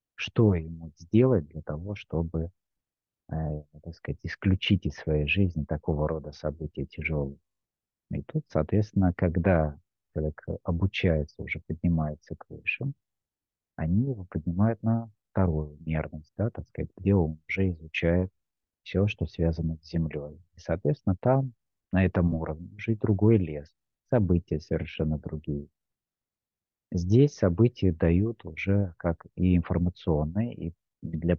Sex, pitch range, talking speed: male, 80-100 Hz, 125 wpm